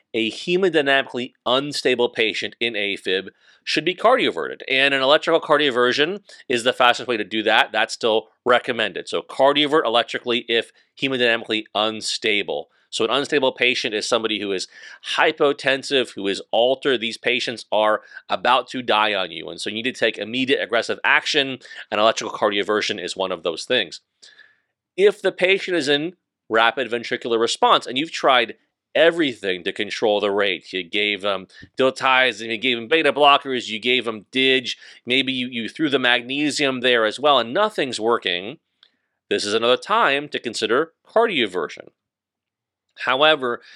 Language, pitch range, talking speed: English, 115-145 Hz, 160 wpm